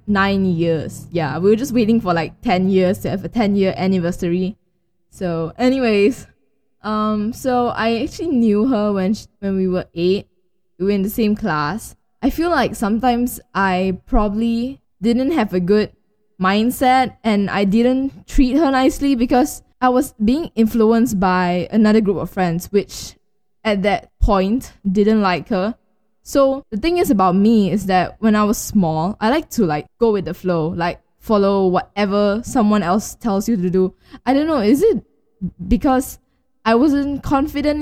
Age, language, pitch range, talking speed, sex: 10-29, English, 185-240 Hz, 170 wpm, female